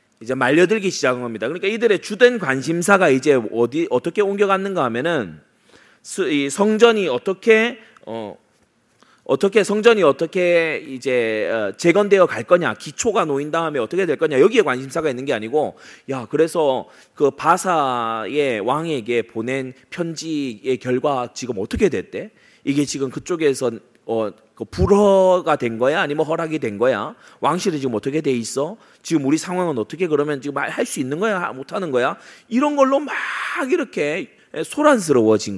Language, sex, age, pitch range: Korean, male, 30-49, 135-205 Hz